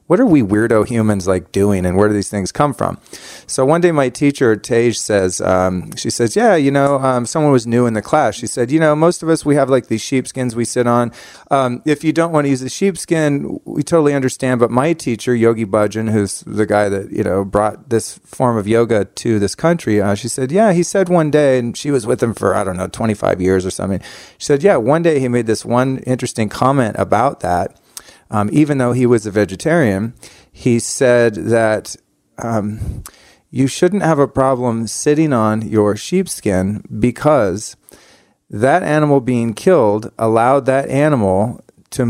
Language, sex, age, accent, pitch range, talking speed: English, male, 40-59, American, 110-140 Hz, 205 wpm